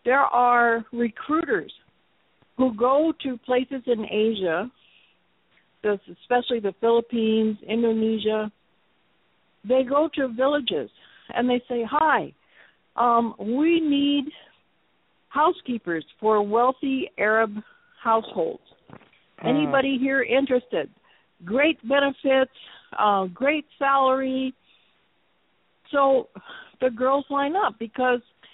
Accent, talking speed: American, 90 wpm